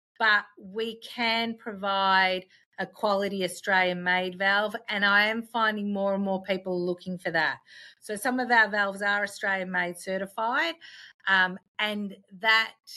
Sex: female